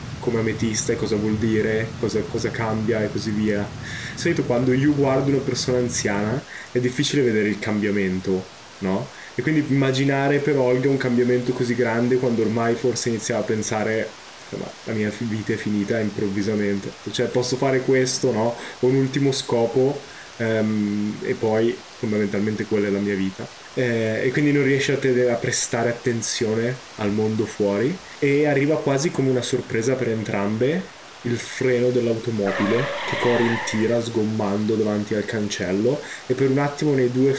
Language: Italian